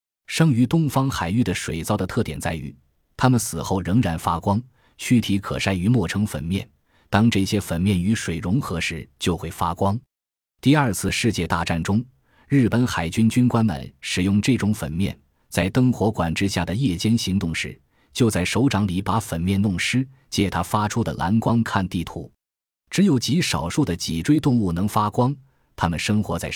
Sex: male